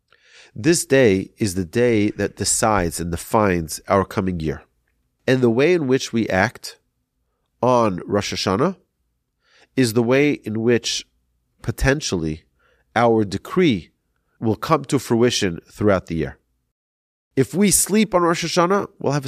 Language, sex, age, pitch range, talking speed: English, male, 40-59, 90-135 Hz, 140 wpm